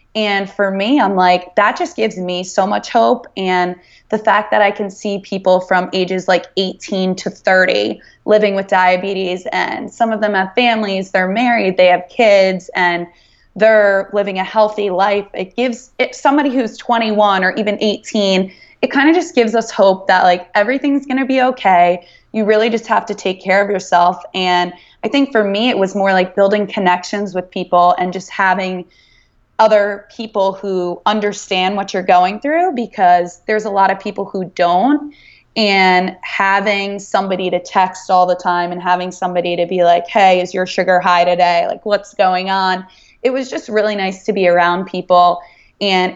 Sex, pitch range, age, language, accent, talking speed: female, 180-215 Hz, 20-39, English, American, 185 wpm